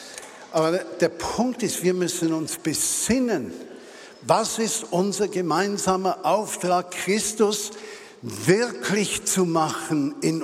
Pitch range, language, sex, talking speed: 145-195 Hz, German, male, 105 wpm